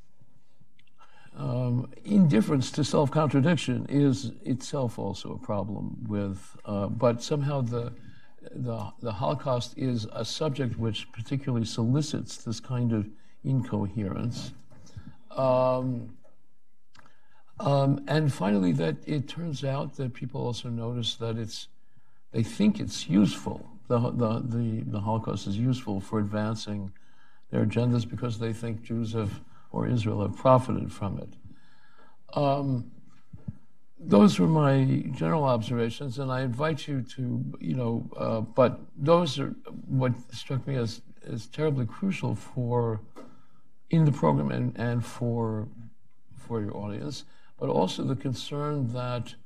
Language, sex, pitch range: English, male, 115-135 Hz